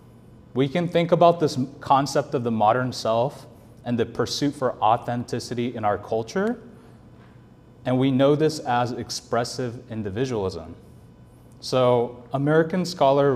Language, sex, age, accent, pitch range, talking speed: English, male, 30-49, American, 115-145 Hz, 125 wpm